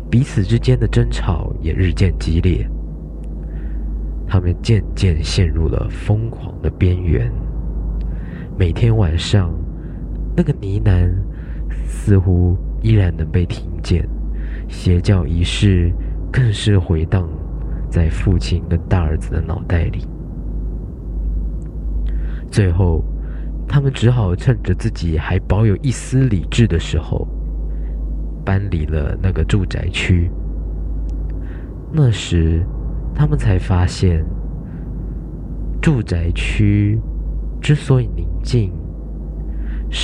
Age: 20-39